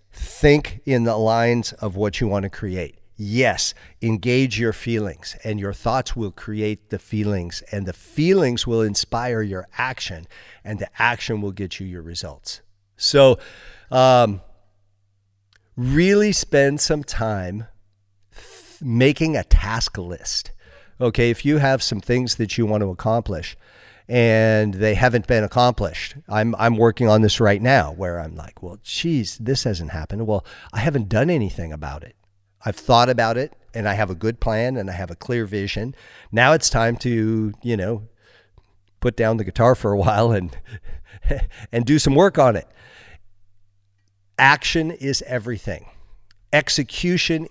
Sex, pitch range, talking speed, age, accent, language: male, 100-125 Hz, 155 wpm, 50-69, American, English